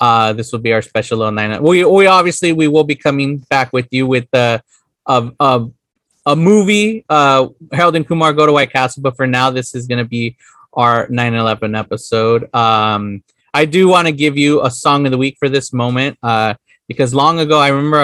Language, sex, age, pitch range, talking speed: English, male, 20-39, 120-145 Hz, 215 wpm